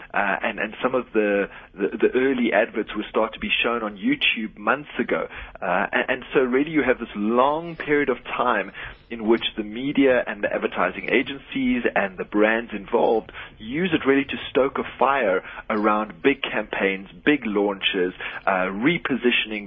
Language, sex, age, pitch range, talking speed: English, male, 30-49, 105-140 Hz, 175 wpm